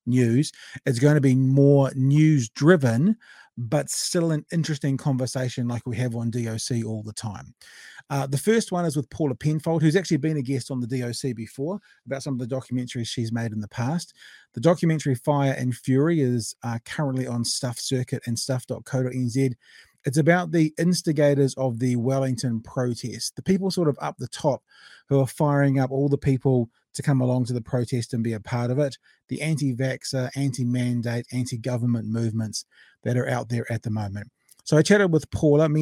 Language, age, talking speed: English, 30-49, 190 wpm